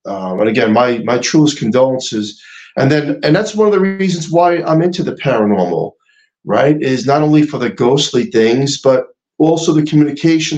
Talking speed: 180 wpm